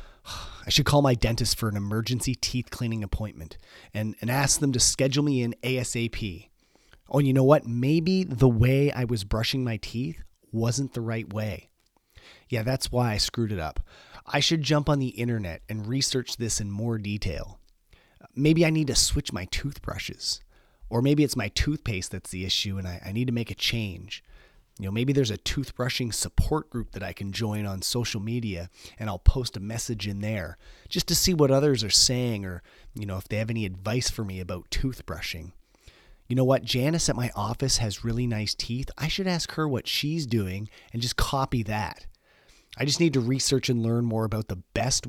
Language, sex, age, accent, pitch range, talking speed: English, male, 30-49, American, 100-130 Hz, 200 wpm